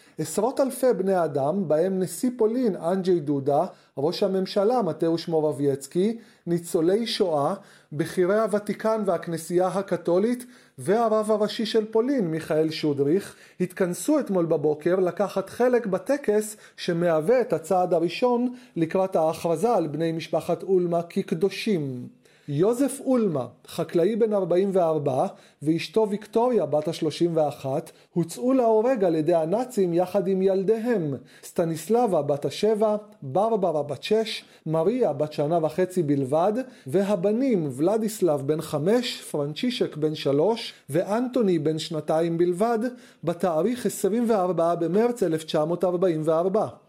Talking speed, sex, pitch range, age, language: 110 wpm, male, 160-215 Hz, 30-49, Hebrew